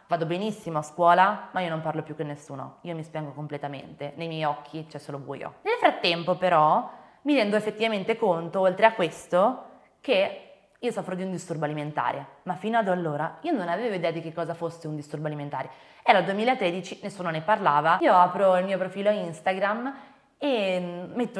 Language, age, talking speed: Italian, 20-39, 190 wpm